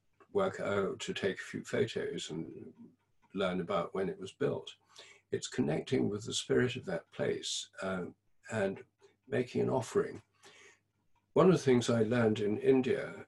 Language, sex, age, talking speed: English, male, 60-79, 160 wpm